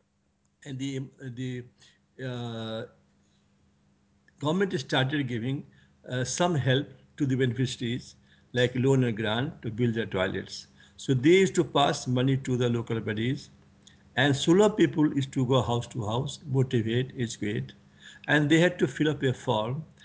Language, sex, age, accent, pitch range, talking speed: English, male, 60-79, Indian, 120-150 Hz, 155 wpm